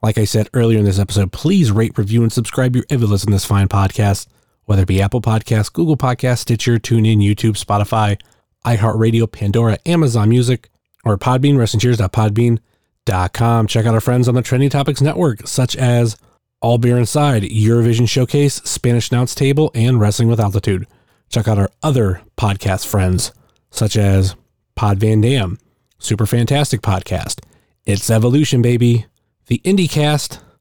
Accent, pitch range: American, 105-125 Hz